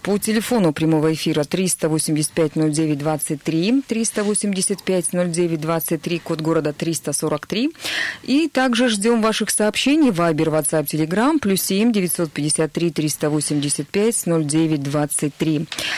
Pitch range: 160-205 Hz